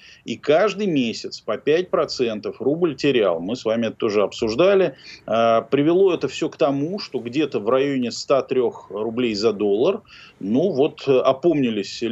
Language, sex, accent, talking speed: Russian, male, native, 150 wpm